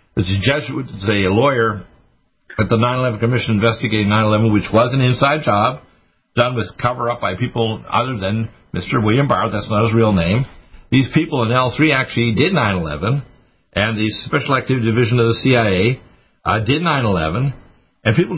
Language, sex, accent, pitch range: English, male, American, 105-140 Hz